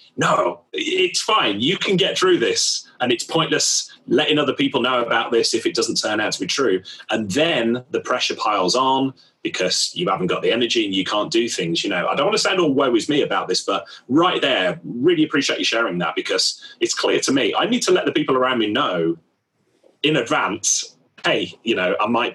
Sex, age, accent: male, 30-49, British